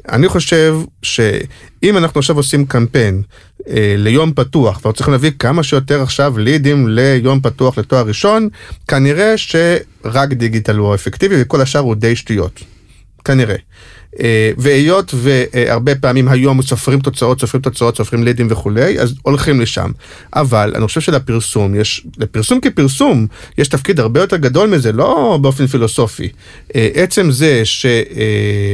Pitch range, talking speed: 115-150 Hz, 125 wpm